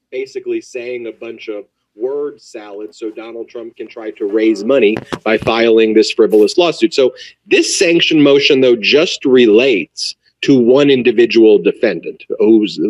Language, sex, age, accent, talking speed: English, male, 40-59, American, 150 wpm